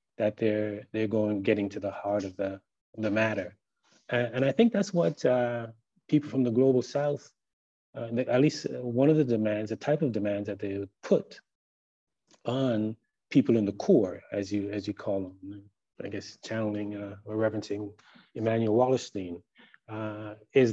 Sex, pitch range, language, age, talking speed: male, 100-120 Hz, English, 30-49, 175 wpm